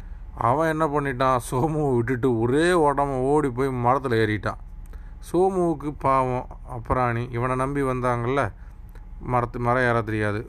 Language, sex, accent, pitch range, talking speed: Tamil, male, native, 115-140 Hz, 120 wpm